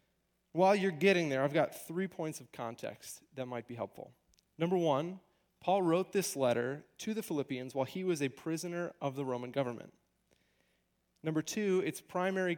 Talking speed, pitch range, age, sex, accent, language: 170 wpm, 130-180 Hz, 30-49, male, American, English